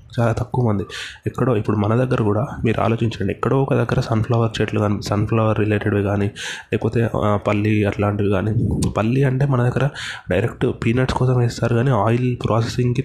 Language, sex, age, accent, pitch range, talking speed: Telugu, male, 20-39, native, 105-125 Hz, 155 wpm